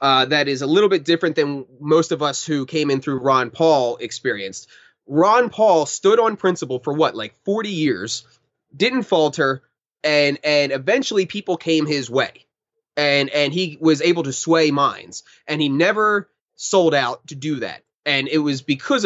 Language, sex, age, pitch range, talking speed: English, male, 20-39, 135-175 Hz, 180 wpm